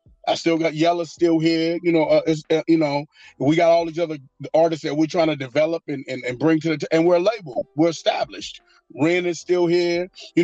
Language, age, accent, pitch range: English, 30-49, American, 150-170 Hz